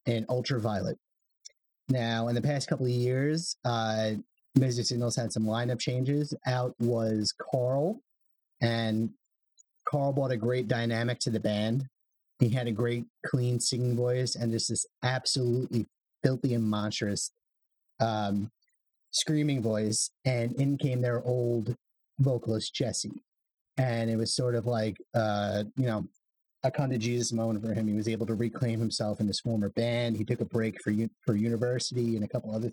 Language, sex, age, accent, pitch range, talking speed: English, male, 30-49, American, 115-135 Hz, 165 wpm